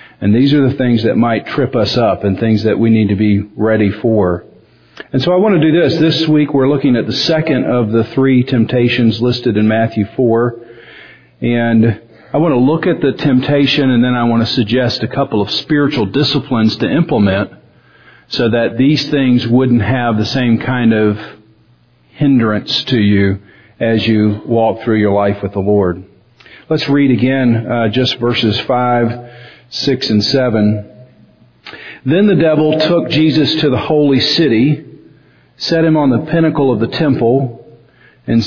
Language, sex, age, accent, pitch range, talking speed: English, male, 40-59, American, 110-135 Hz, 175 wpm